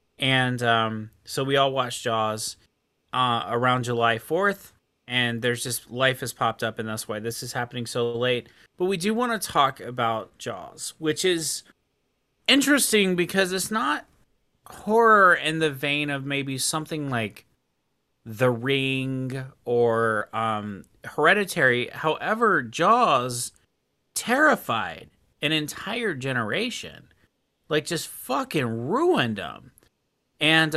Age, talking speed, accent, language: 30-49, 125 wpm, American, English